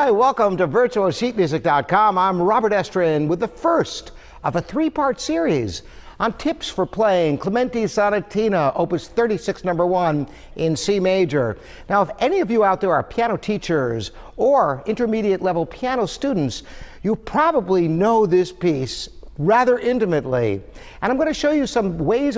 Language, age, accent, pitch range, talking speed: English, 60-79, American, 160-220 Hz, 155 wpm